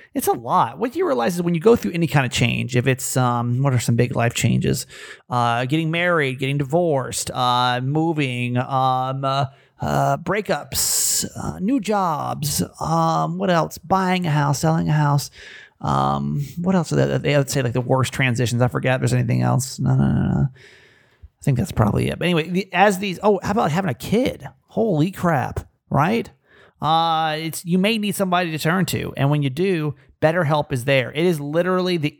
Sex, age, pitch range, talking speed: male, 30-49, 130-175 Hz, 200 wpm